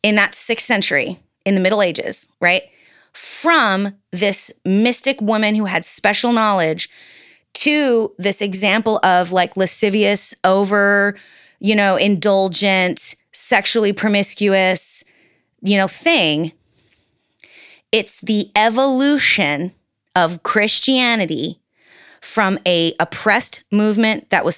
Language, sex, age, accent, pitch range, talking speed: English, female, 30-49, American, 180-220 Hz, 105 wpm